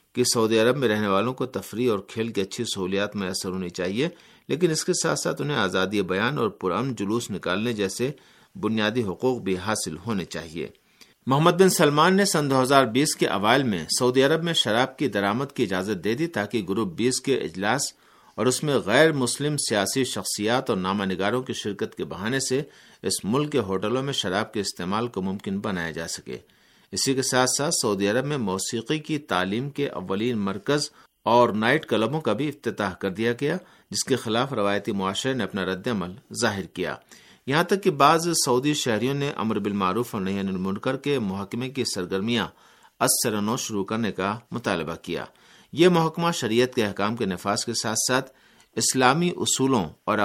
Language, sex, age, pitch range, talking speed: Urdu, male, 50-69, 100-135 Hz, 185 wpm